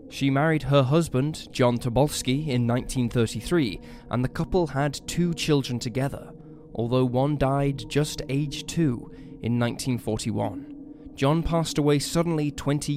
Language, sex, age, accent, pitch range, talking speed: English, male, 10-29, British, 120-155 Hz, 130 wpm